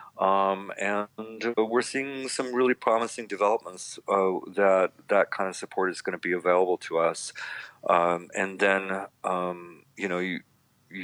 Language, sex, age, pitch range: English, male, 40-59, 90-105 Hz